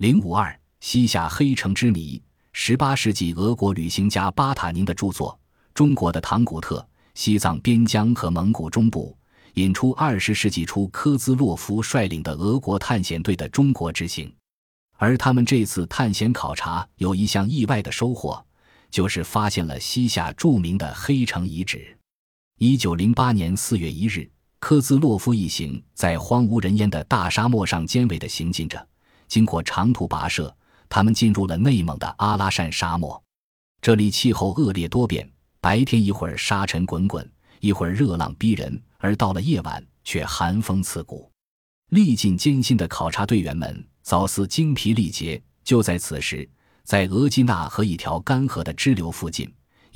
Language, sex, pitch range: Chinese, male, 85-120 Hz